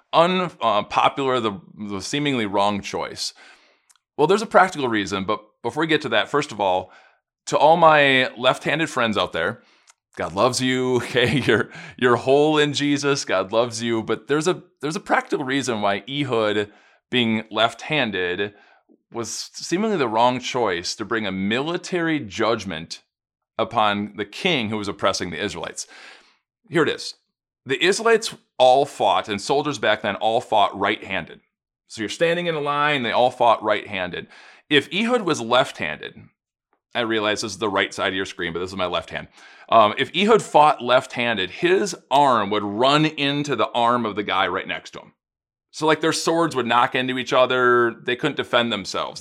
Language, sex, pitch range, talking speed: English, male, 110-155 Hz, 175 wpm